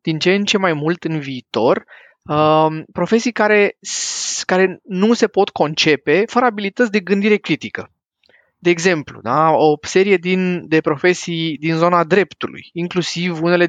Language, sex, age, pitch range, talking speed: Romanian, male, 20-39, 150-185 Hz, 135 wpm